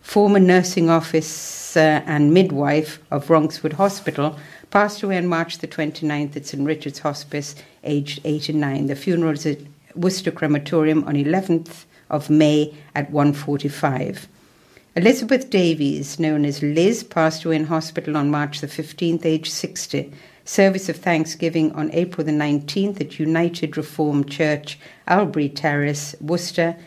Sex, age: female, 60-79